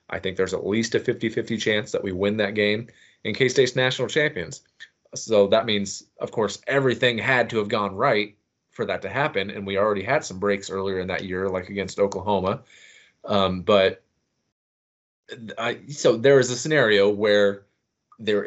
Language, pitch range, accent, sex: English, 100-110 Hz, American, male